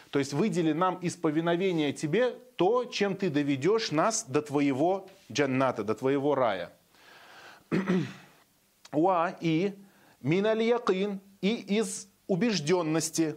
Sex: male